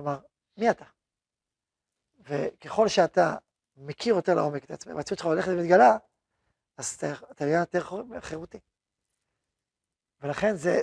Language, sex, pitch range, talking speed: Hebrew, male, 170-230 Hz, 110 wpm